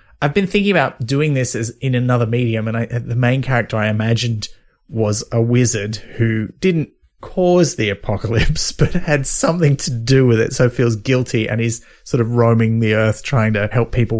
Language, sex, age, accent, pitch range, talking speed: English, male, 30-49, Australian, 110-145 Hz, 195 wpm